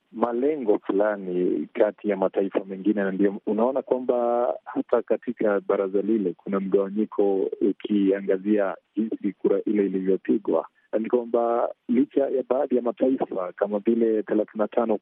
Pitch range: 105-130 Hz